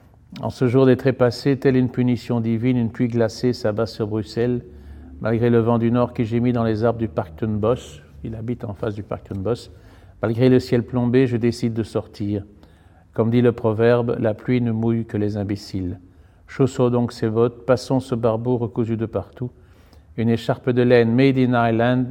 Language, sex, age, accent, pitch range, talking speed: French, male, 50-69, French, 105-120 Hz, 195 wpm